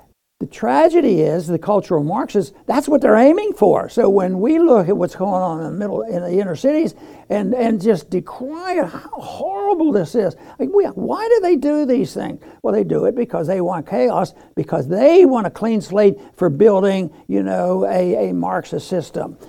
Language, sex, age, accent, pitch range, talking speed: English, male, 60-79, American, 170-225 Hz, 195 wpm